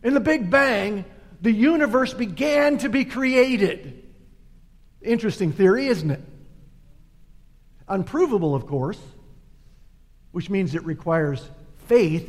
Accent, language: American, English